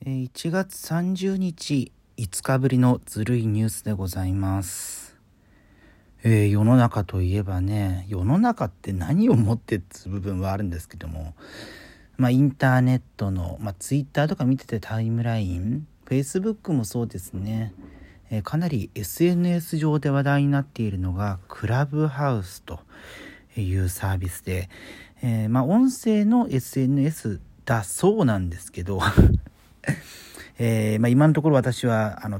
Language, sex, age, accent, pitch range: Japanese, male, 40-59, native, 95-130 Hz